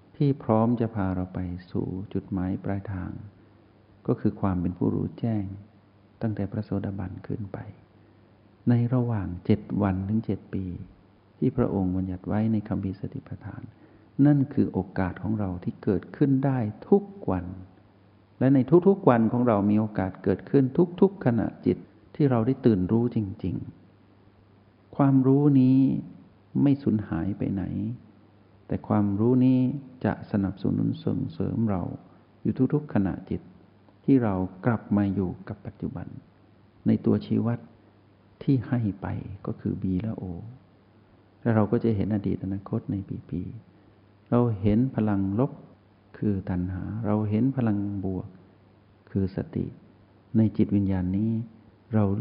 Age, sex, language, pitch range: 60-79, male, Thai, 95-115 Hz